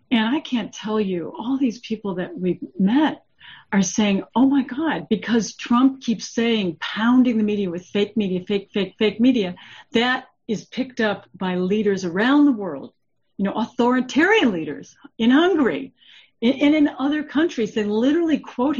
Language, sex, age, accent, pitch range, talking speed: English, female, 50-69, American, 195-280 Hz, 165 wpm